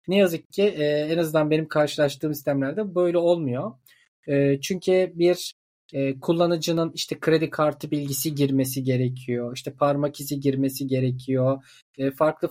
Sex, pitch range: male, 140-185 Hz